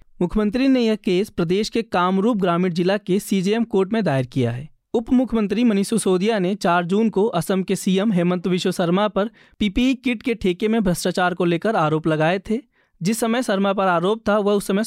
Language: Hindi